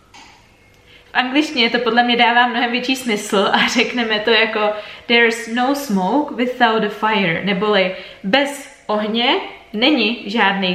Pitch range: 205-245 Hz